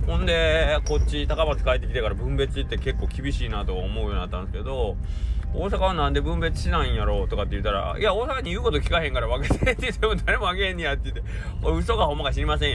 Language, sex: Japanese, male